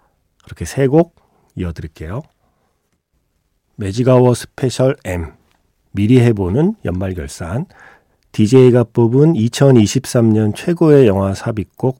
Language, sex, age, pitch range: Korean, male, 40-59, 90-135 Hz